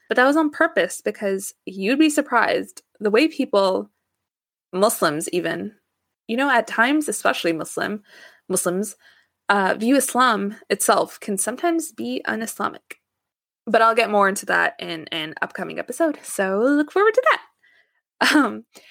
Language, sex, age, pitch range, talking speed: English, female, 20-39, 185-250 Hz, 145 wpm